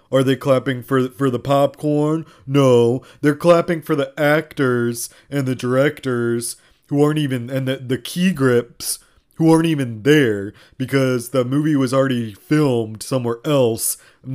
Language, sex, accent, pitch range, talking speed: English, male, American, 120-145 Hz, 155 wpm